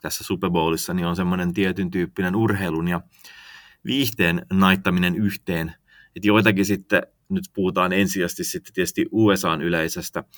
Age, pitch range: 30-49, 85-100 Hz